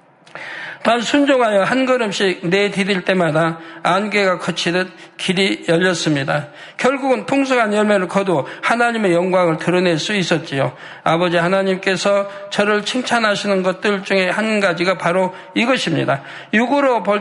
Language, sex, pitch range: Korean, male, 175-220 Hz